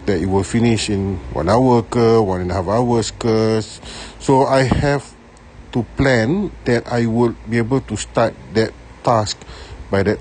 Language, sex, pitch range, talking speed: Malay, male, 100-145 Hz, 175 wpm